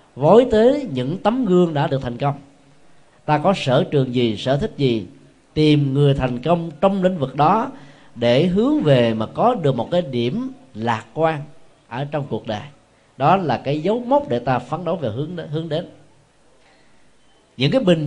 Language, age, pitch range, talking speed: Vietnamese, 20-39, 125-170 Hz, 185 wpm